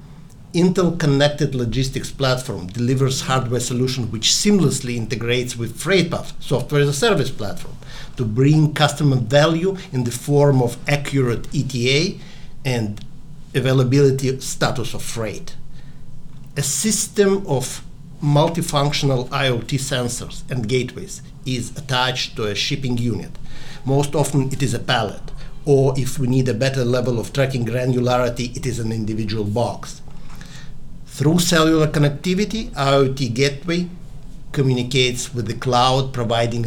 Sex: male